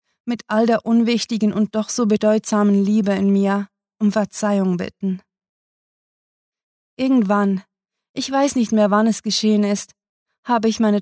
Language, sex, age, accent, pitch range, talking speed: German, female, 20-39, German, 200-225 Hz, 140 wpm